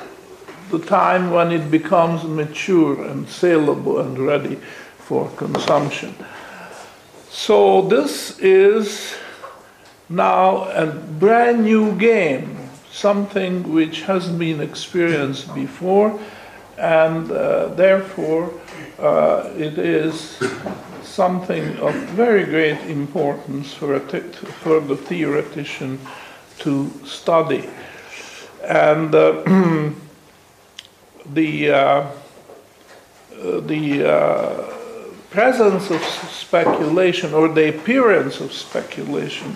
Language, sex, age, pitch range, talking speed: English, male, 50-69, 145-190 Hz, 90 wpm